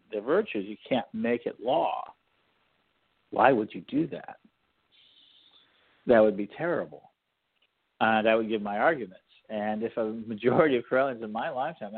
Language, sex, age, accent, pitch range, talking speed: English, male, 50-69, American, 110-185 Hz, 155 wpm